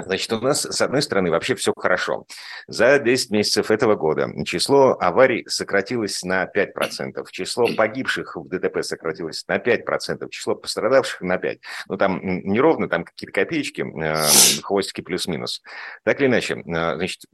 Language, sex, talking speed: Russian, male, 145 wpm